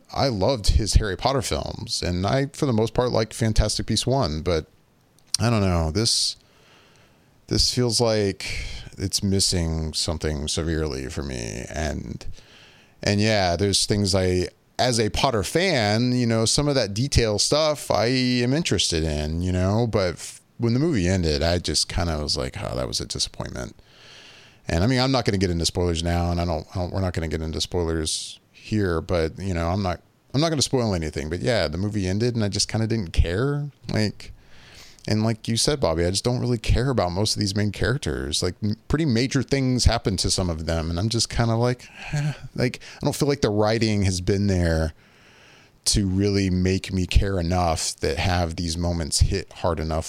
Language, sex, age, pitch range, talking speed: English, male, 30-49, 85-120 Hz, 200 wpm